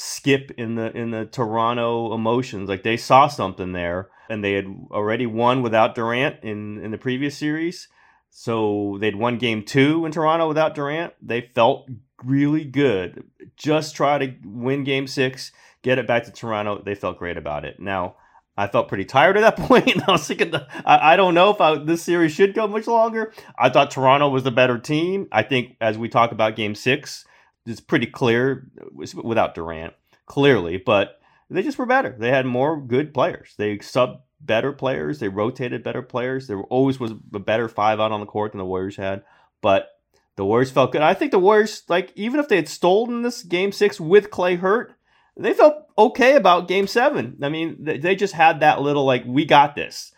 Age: 30-49